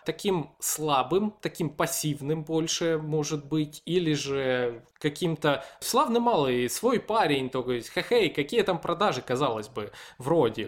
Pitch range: 140-195 Hz